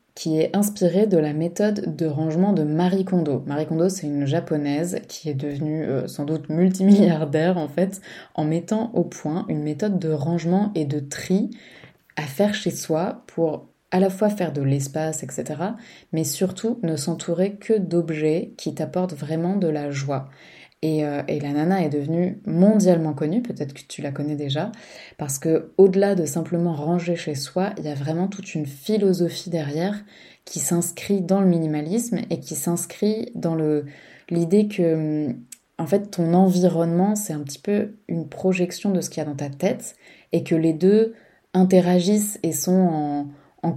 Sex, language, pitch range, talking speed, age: female, French, 155-190 Hz, 180 wpm, 20-39